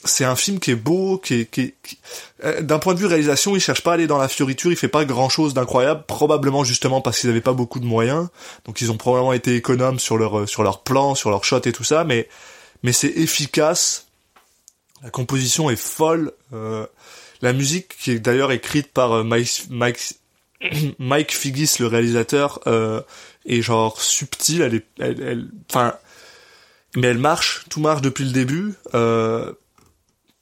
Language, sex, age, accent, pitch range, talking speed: French, male, 20-39, French, 120-150 Hz, 190 wpm